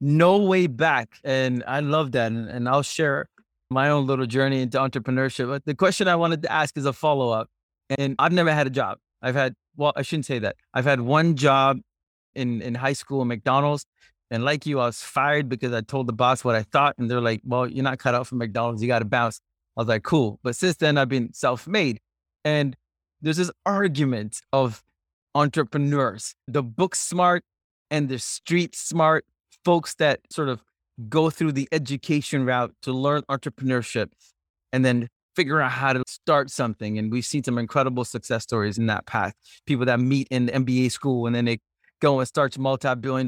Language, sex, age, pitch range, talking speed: English, male, 20-39, 120-145 Hz, 200 wpm